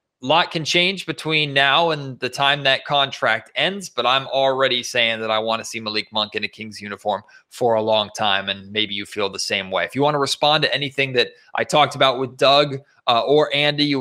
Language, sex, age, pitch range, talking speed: English, male, 30-49, 115-140 Hz, 235 wpm